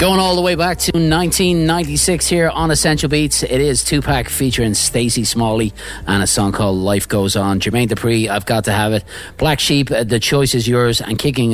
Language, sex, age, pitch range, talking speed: English, male, 30-49, 105-135 Hz, 205 wpm